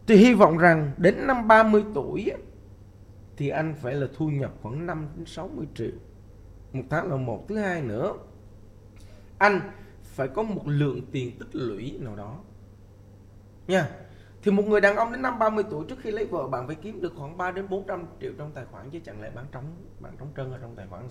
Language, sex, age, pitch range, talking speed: Vietnamese, male, 20-39, 105-160 Hz, 215 wpm